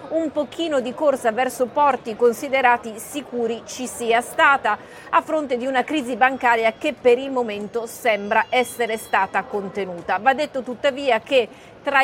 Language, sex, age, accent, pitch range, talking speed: Italian, female, 30-49, native, 215-265 Hz, 150 wpm